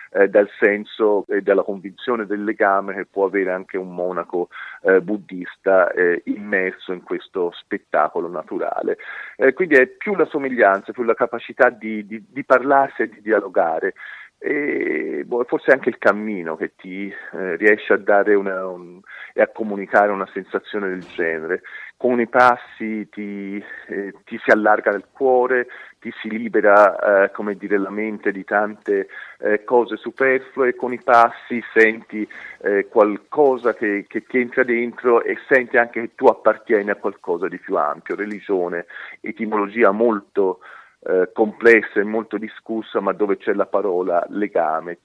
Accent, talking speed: Italian, 155 wpm